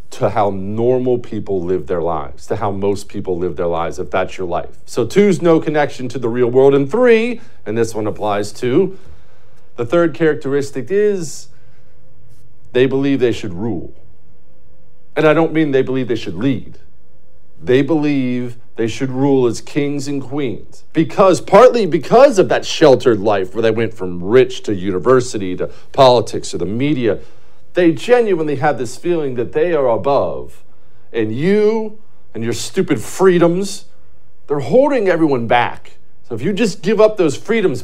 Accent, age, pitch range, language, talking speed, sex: American, 50-69, 110-165 Hz, English, 170 wpm, male